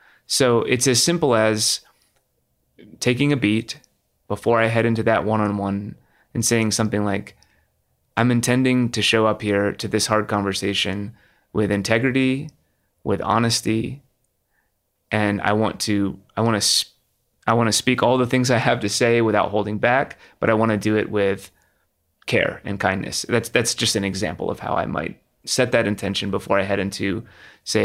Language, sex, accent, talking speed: English, male, American, 170 wpm